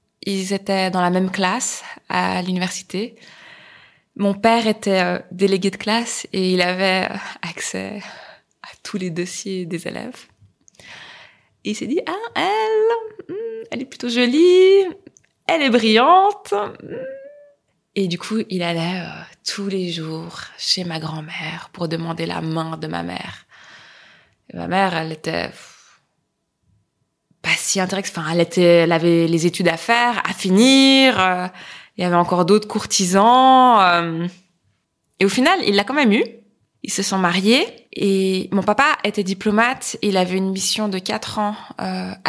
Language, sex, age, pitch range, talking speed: French, female, 20-39, 180-225 Hz, 150 wpm